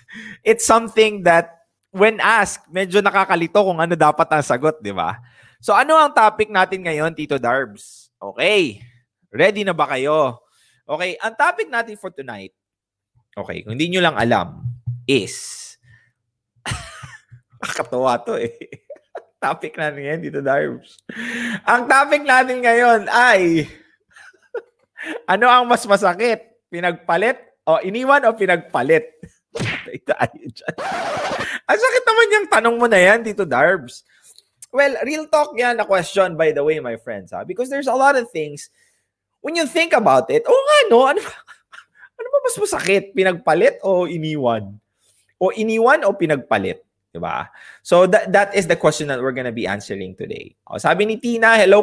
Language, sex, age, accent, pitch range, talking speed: English, male, 20-39, Filipino, 150-240 Hz, 145 wpm